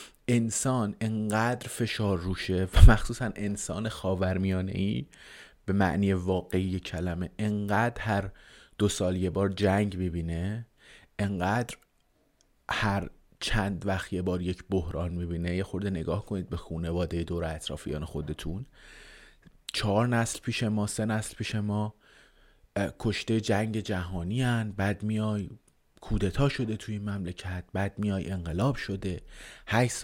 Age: 30-49